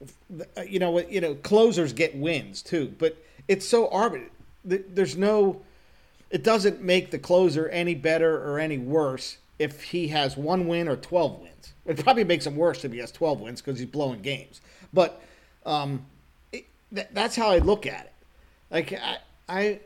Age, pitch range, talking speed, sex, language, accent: 40-59, 135-185 Hz, 170 wpm, male, English, American